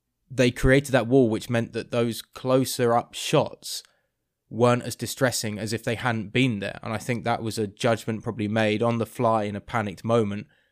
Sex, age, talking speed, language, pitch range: male, 20-39, 200 wpm, English, 110-130 Hz